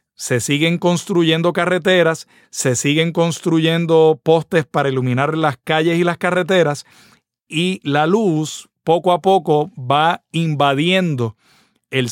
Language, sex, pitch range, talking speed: Spanish, male, 140-175 Hz, 120 wpm